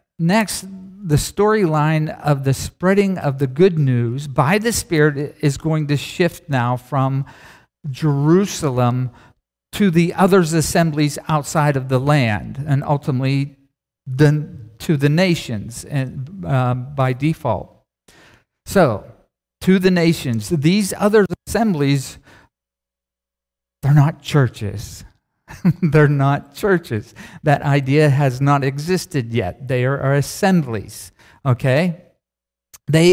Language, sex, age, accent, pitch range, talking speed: English, male, 50-69, American, 130-175 Hz, 110 wpm